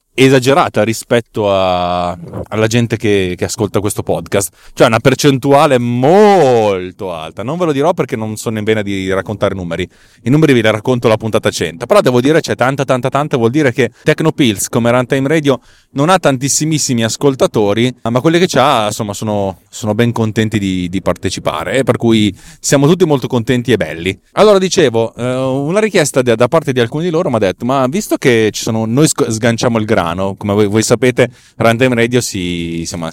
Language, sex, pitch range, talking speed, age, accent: Italian, male, 100-135 Hz, 195 wpm, 30-49, native